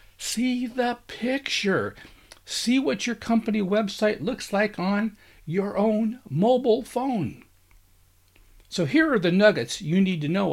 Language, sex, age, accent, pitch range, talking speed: English, male, 60-79, American, 135-215 Hz, 135 wpm